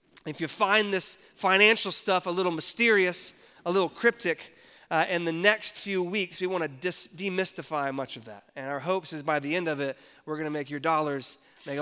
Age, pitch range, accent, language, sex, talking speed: 30-49, 160-205 Hz, American, English, male, 210 wpm